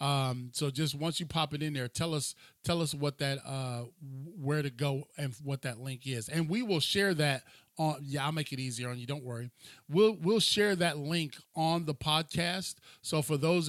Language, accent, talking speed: English, American, 220 wpm